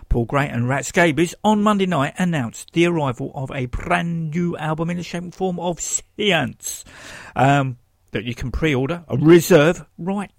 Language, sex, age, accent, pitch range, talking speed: English, male, 50-69, British, 120-165 Hz, 185 wpm